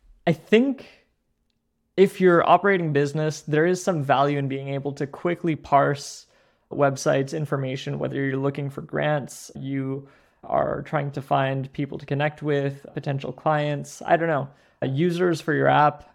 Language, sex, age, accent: English, male, 20-39, American